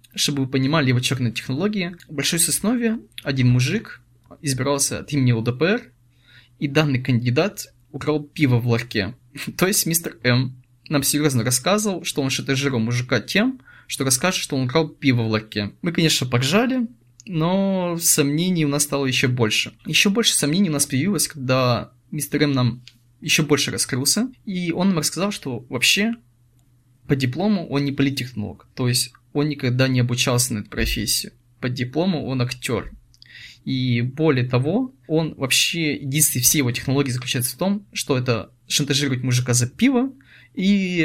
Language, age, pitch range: Russian, 20-39, 125-160 Hz